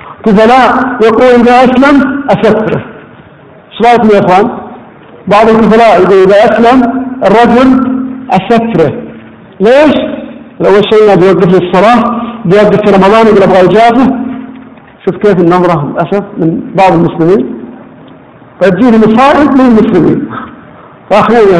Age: 50-69